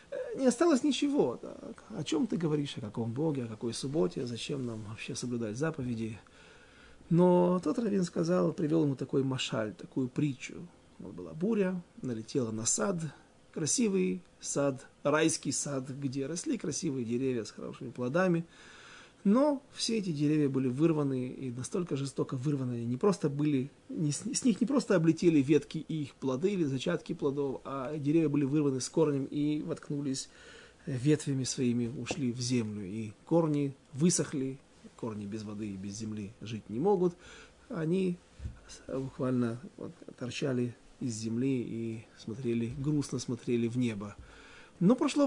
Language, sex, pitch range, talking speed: Russian, male, 125-165 Hz, 145 wpm